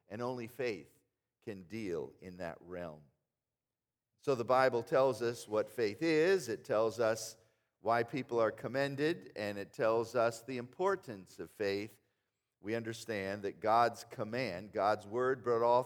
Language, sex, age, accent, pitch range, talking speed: English, male, 50-69, American, 110-165 Hz, 150 wpm